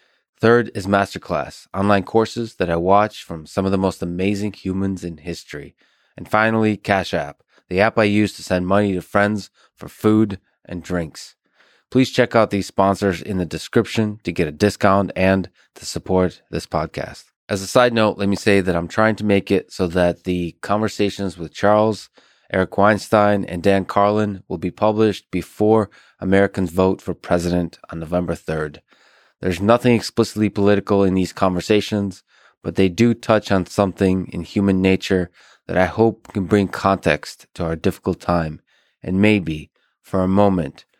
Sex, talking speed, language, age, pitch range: male, 170 wpm, English, 20-39, 90-105 Hz